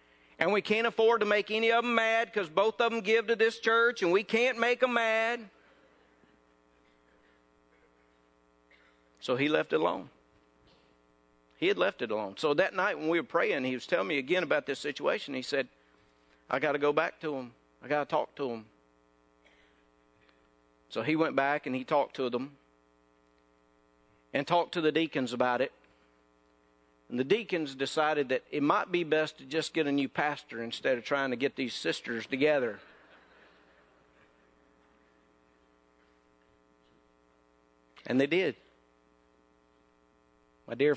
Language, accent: English, American